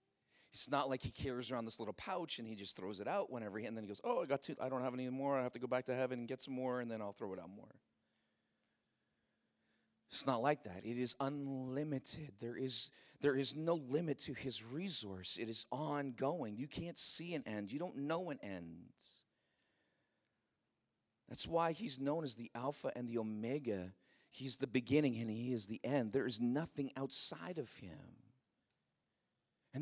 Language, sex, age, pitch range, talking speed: English, male, 40-59, 130-195 Hz, 205 wpm